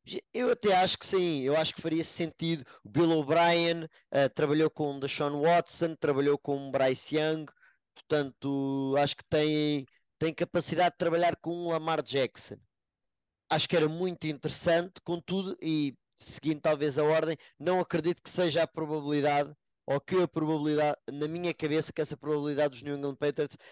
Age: 20-39